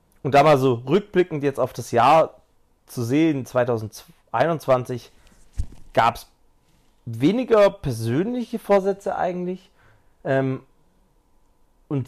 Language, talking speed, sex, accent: German, 100 wpm, male, German